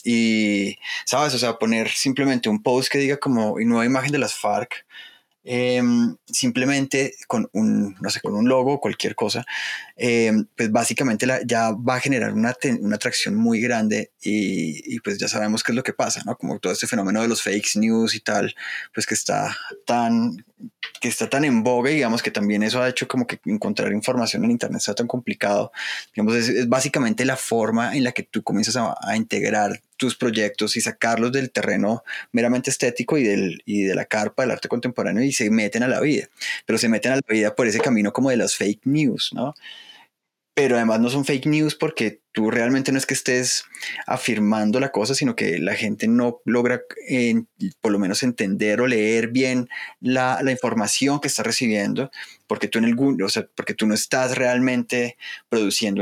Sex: male